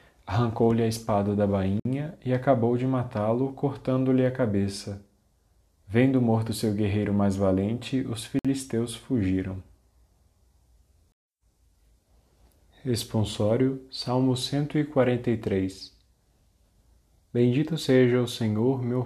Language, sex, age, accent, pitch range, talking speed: Portuguese, male, 20-39, Brazilian, 100-120 Hz, 90 wpm